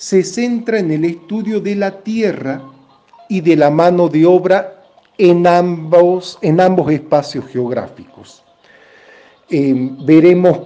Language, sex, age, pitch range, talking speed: Spanish, male, 50-69, 145-195 Hz, 120 wpm